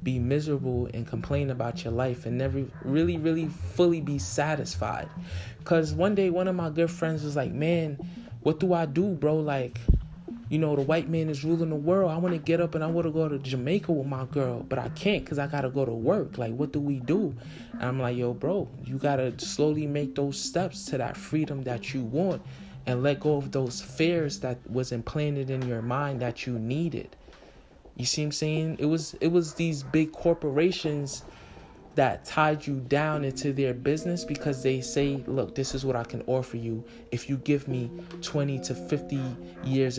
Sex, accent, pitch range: male, American, 125-160 Hz